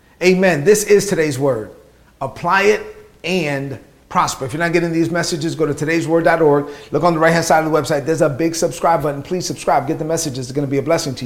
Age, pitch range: 40-59, 145-175 Hz